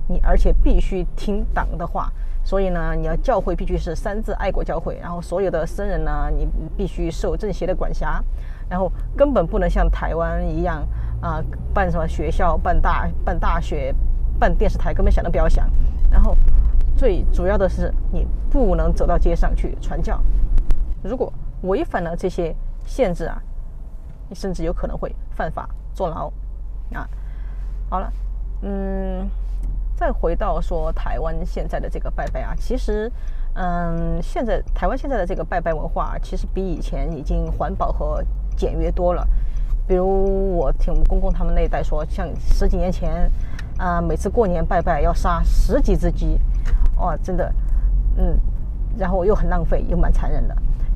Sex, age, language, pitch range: female, 20-39, Chinese, 160-190 Hz